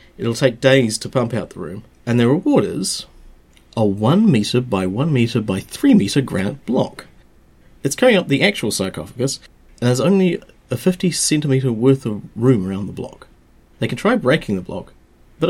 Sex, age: male, 40-59